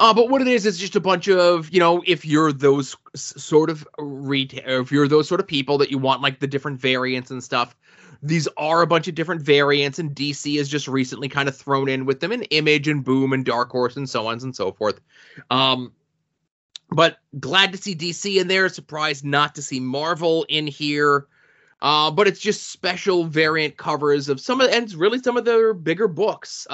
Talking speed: 220 wpm